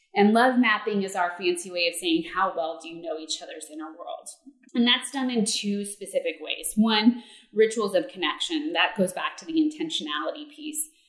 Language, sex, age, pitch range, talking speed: English, female, 20-39, 190-295 Hz, 195 wpm